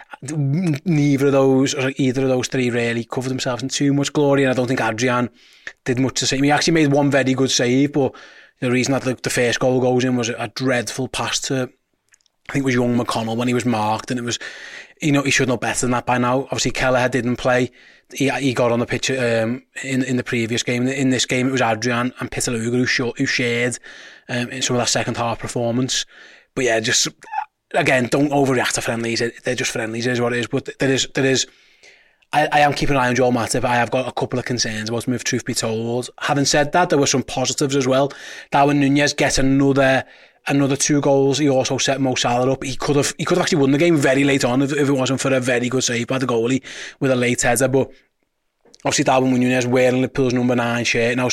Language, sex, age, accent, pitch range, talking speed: English, male, 20-39, British, 125-140 Hz, 240 wpm